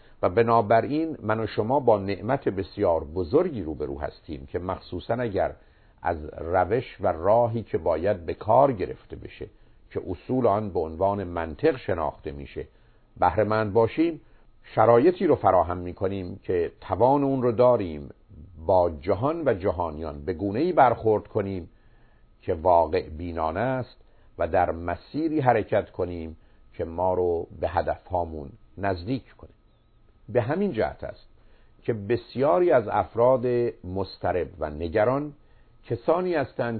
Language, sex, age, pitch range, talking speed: Persian, male, 50-69, 85-120 Hz, 130 wpm